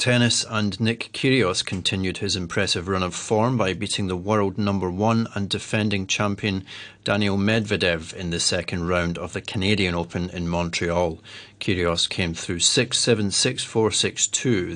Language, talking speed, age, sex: English, 150 wpm, 40-59, male